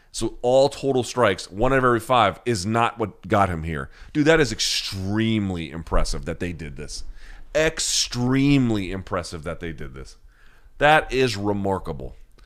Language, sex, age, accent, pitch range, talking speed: English, male, 40-59, American, 80-110 Hz, 160 wpm